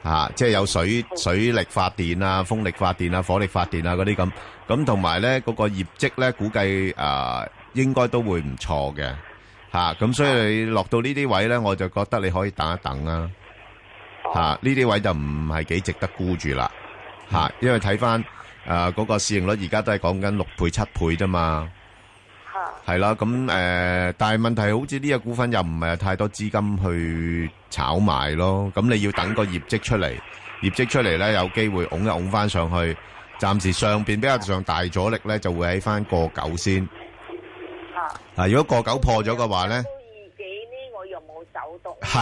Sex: male